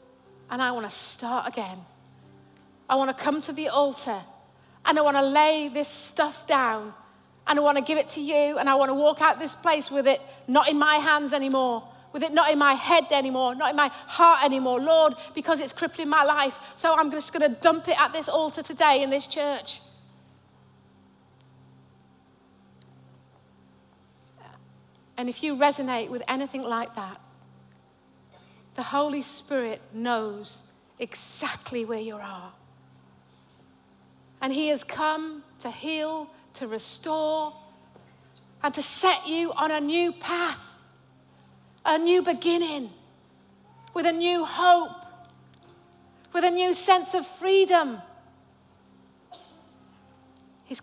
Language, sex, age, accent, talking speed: English, female, 40-59, British, 145 wpm